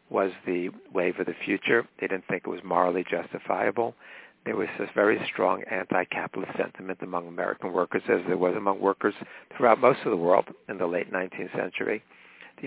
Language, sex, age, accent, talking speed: English, male, 60-79, American, 185 wpm